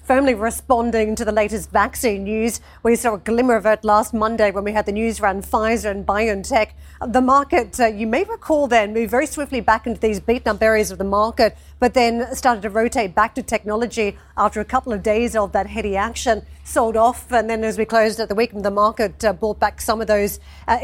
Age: 40-59